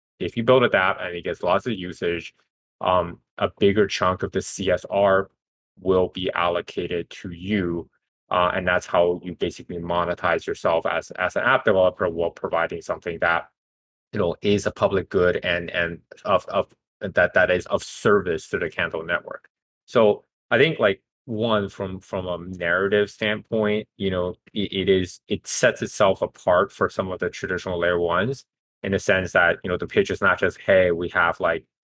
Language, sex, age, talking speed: English, male, 20-39, 190 wpm